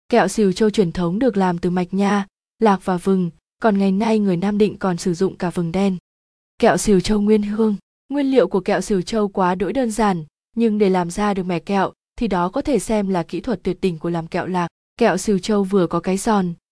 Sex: female